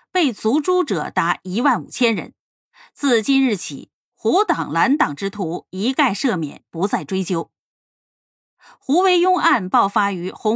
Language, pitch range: Chinese, 190-290 Hz